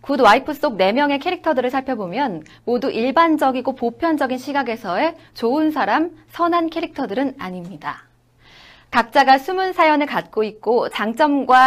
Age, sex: 20-39, female